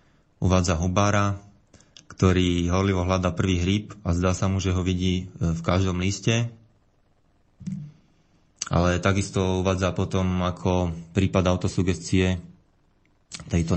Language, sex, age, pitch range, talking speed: Slovak, male, 20-39, 90-100 Hz, 110 wpm